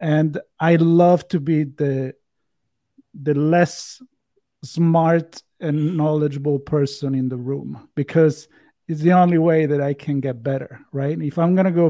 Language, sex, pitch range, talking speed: English, male, 140-165 Hz, 150 wpm